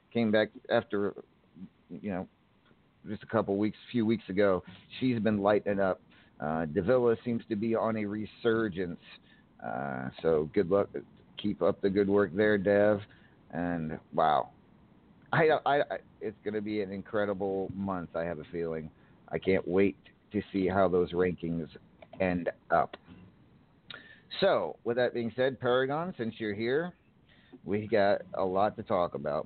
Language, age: English, 50-69